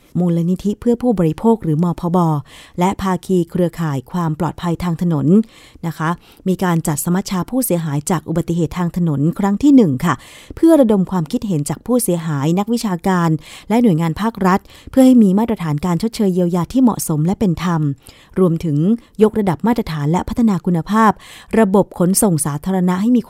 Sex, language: female, Thai